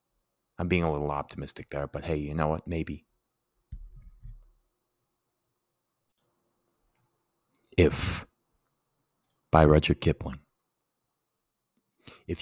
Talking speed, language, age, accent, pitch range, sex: 80 wpm, English, 30-49, American, 75-95 Hz, male